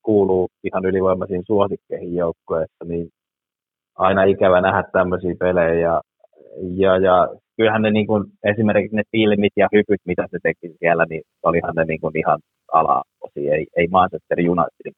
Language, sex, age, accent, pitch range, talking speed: Finnish, male, 30-49, native, 90-105 Hz, 145 wpm